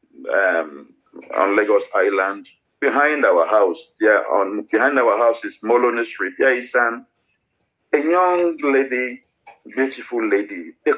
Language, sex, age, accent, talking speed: English, male, 50-69, Nigerian, 120 wpm